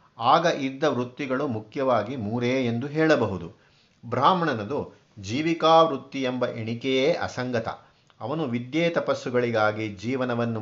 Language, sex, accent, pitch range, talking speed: Kannada, male, native, 115-145 Hz, 95 wpm